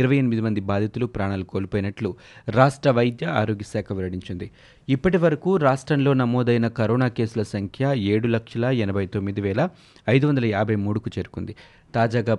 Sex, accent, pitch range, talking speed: male, native, 105-135 Hz, 100 wpm